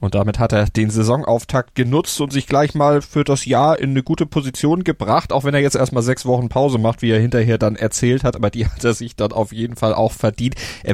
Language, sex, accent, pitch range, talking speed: German, male, German, 115-140 Hz, 250 wpm